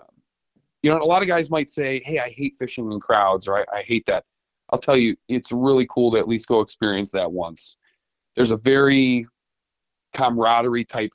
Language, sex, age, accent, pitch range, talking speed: English, male, 30-49, American, 105-130 Hz, 200 wpm